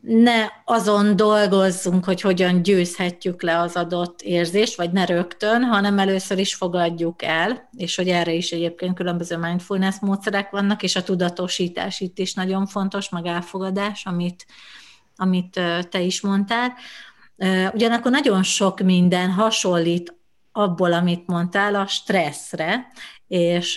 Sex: female